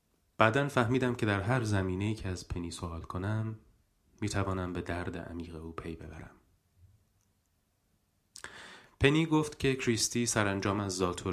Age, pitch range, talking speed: 30-49, 90-110 Hz, 140 wpm